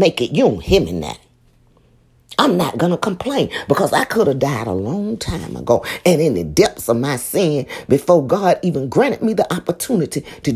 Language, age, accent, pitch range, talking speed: English, 40-59, American, 115-185 Hz, 200 wpm